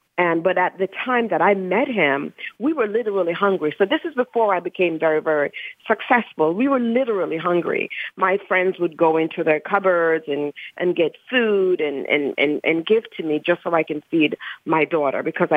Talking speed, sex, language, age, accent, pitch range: 200 wpm, female, English, 40-59, American, 155-195 Hz